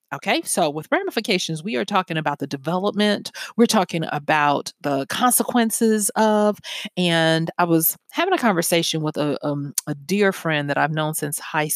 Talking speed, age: 170 wpm, 40-59